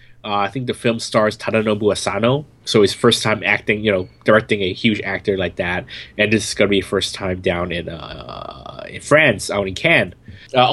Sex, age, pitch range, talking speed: male, 20-39, 105-135 Hz, 215 wpm